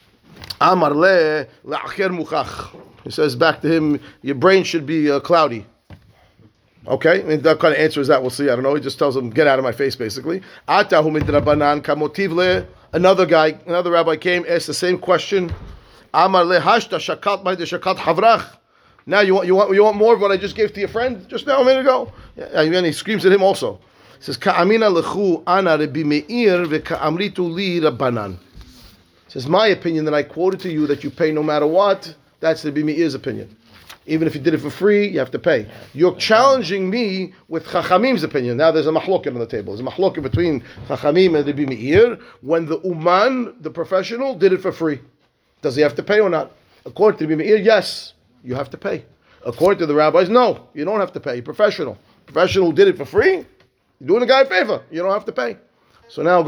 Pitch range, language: 145-190 Hz, English